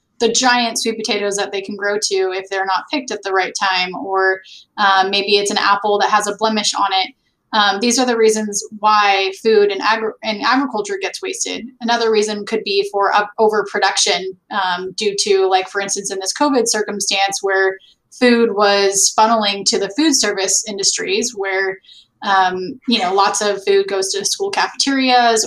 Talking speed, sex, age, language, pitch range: 180 wpm, female, 10-29, English, 195-220 Hz